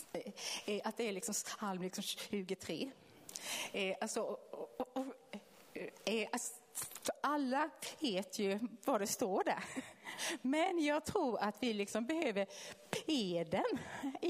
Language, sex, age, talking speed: Swedish, female, 30-49, 95 wpm